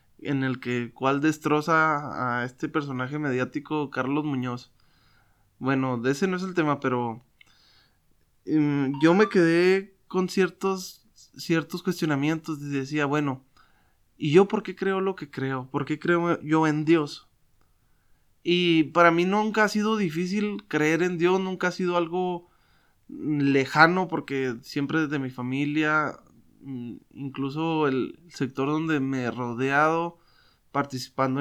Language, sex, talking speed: Spanish, male, 140 wpm